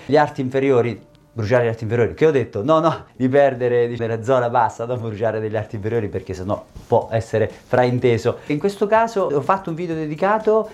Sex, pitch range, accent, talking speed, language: male, 120-155 Hz, native, 200 wpm, Italian